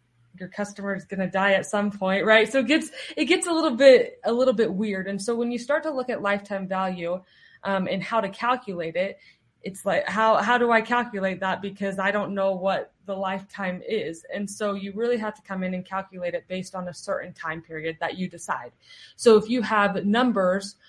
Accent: American